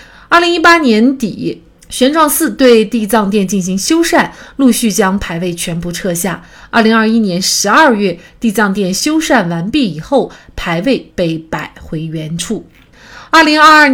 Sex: female